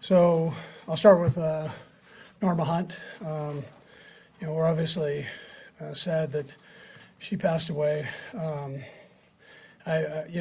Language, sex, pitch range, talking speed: English, male, 140-160 Hz, 125 wpm